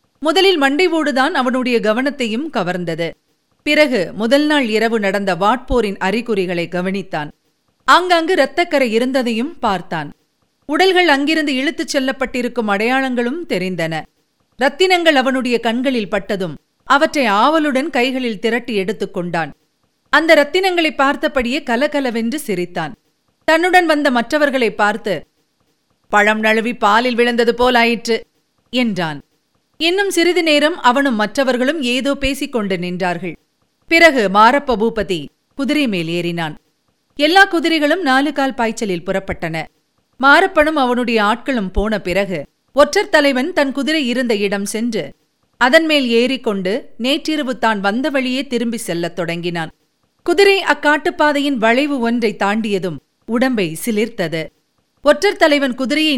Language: Tamil